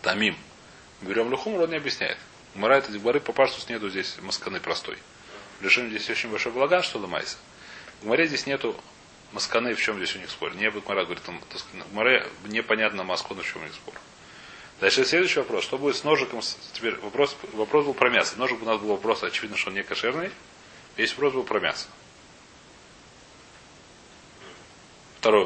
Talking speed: 175 wpm